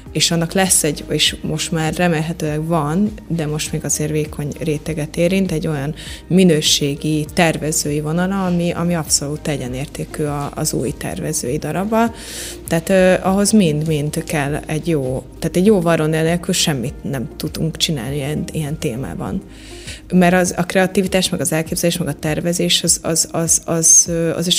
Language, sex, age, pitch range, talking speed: Hungarian, female, 20-39, 150-180 Hz, 145 wpm